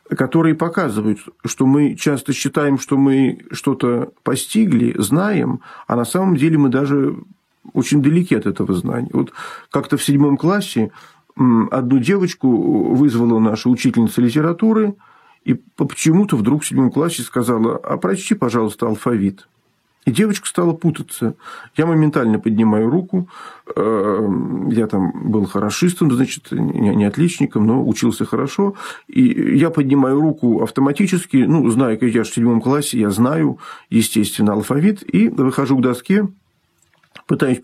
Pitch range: 115-165 Hz